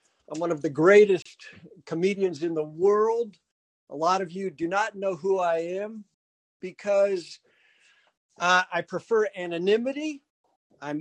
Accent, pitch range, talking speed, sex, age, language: American, 160-210 Hz, 135 wpm, male, 60-79, English